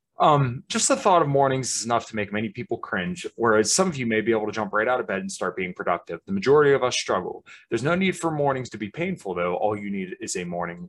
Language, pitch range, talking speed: English, 100-140 Hz, 275 wpm